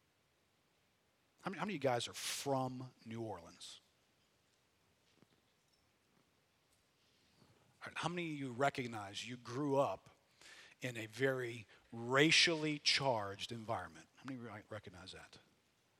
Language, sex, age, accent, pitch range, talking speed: English, male, 50-69, American, 115-150 Hz, 110 wpm